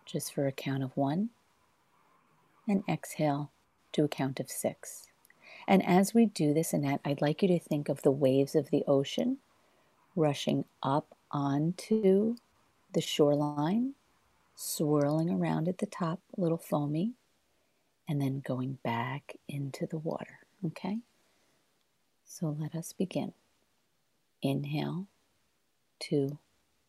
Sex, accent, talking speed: female, American, 125 wpm